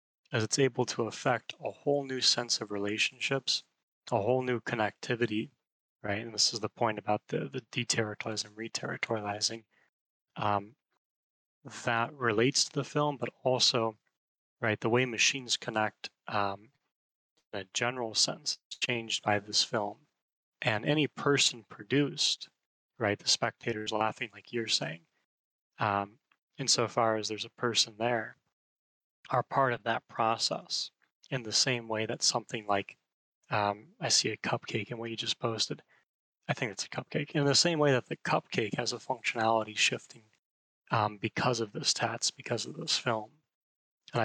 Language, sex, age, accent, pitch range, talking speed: English, male, 20-39, American, 110-130 Hz, 155 wpm